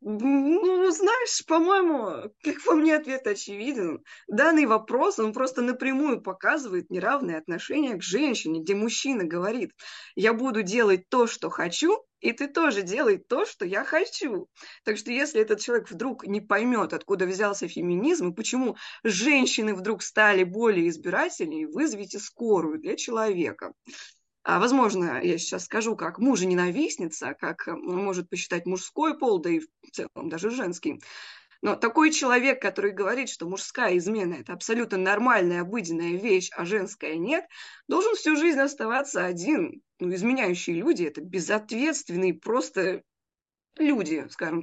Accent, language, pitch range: native, Russian, 195-305 Hz